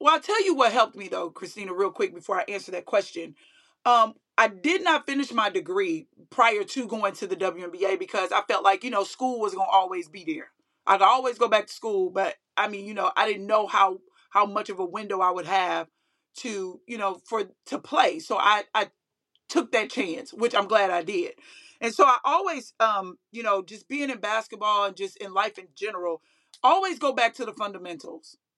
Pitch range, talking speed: 200-275 Hz, 220 wpm